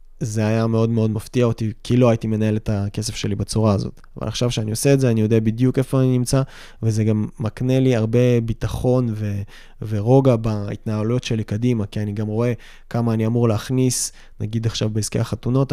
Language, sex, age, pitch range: Hebrew, male, 20-39, 110-125 Hz